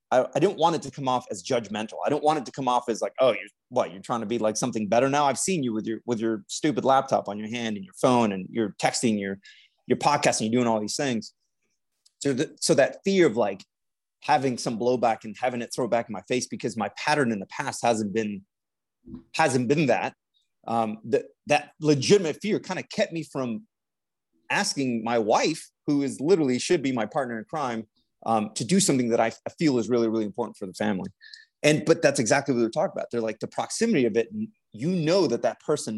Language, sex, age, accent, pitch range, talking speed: English, male, 30-49, American, 115-145 Hz, 235 wpm